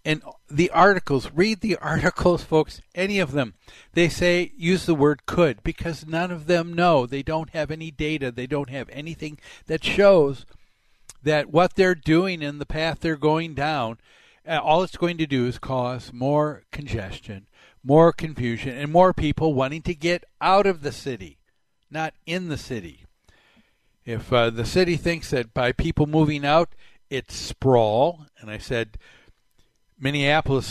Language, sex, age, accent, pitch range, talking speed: English, male, 60-79, American, 125-170 Hz, 160 wpm